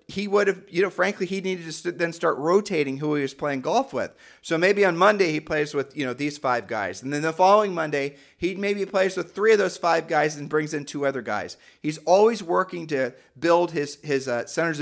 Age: 40-59